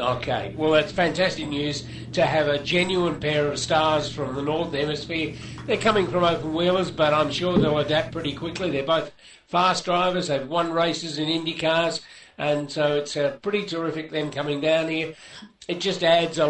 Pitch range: 155-185 Hz